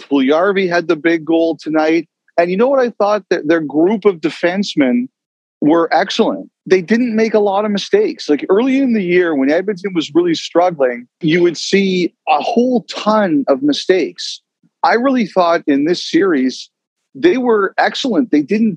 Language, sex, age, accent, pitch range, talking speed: English, male, 40-59, American, 155-230 Hz, 175 wpm